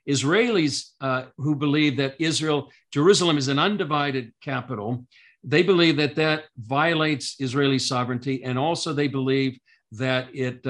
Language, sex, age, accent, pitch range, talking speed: English, male, 50-69, American, 125-150 Hz, 135 wpm